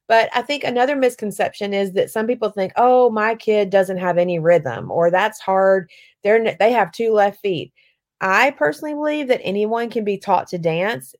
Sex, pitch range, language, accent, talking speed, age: female, 175-215 Hz, English, American, 195 wpm, 30-49